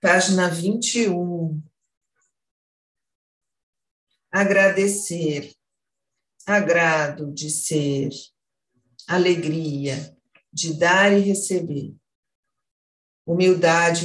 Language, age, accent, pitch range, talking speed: Portuguese, 50-69, Brazilian, 160-195 Hz, 50 wpm